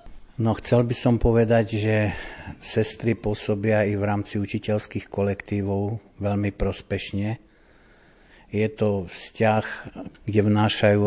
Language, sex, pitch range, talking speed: Slovak, male, 95-105 Hz, 110 wpm